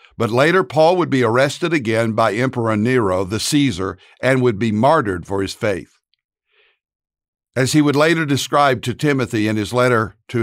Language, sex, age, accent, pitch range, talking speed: English, male, 60-79, American, 115-145 Hz, 175 wpm